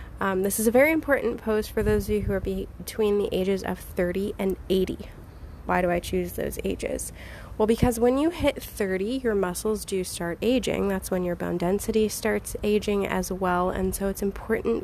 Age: 20-39